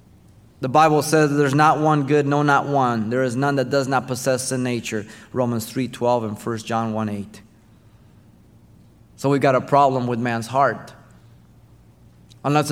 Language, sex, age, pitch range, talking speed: English, male, 30-49, 115-140 Hz, 170 wpm